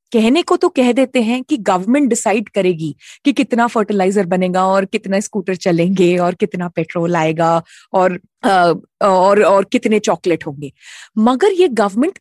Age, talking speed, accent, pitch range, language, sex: 20-39, 155 wpm, native, 200-280 Hz, Hindi, female